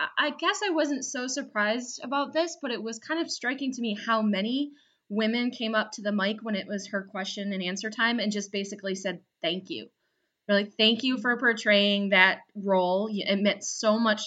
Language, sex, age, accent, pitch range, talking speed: English, female, 20-39, American, 190-220 Hz, 210 wpm